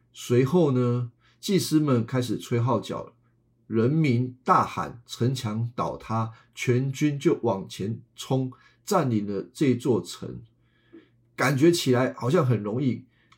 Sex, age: male, 50-69